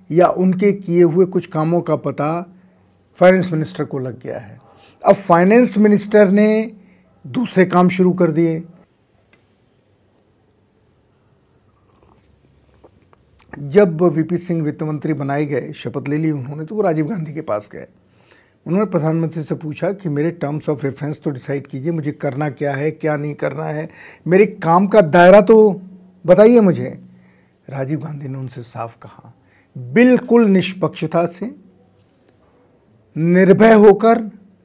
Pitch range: 135-185 Hz